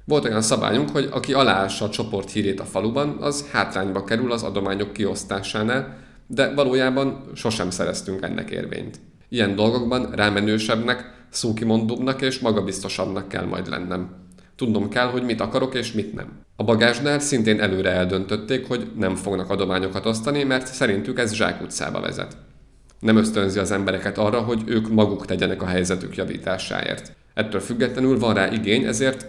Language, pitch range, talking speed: Hungarian, 95-120 Hz, 150 wpm